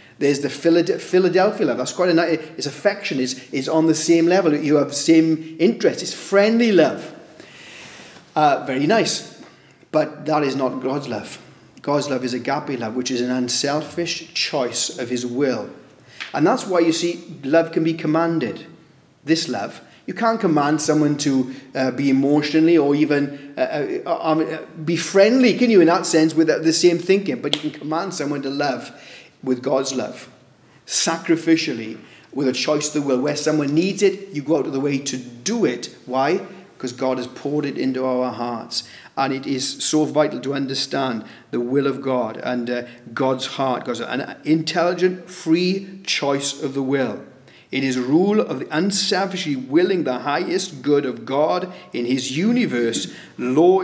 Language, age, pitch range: English, 30-49, 130-170 Hz